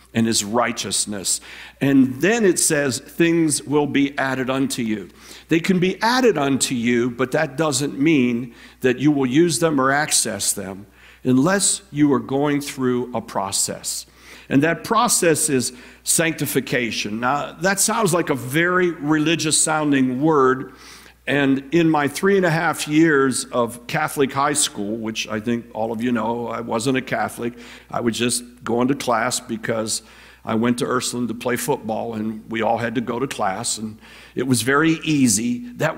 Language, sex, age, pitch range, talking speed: English, male, 50-69, 120-165 Hz, 170 wpm